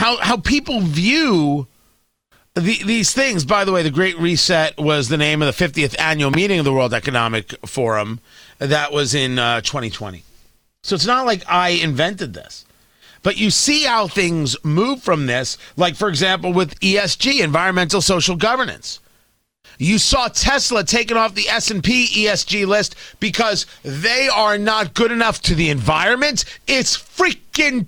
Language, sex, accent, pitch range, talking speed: English, male, American, 140-210 Hz, 160 wpm